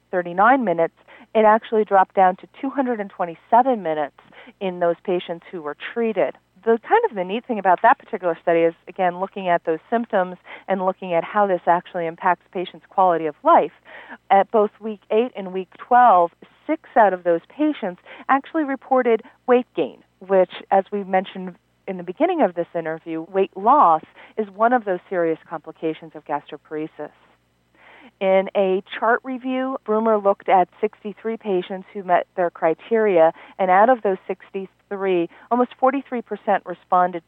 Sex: female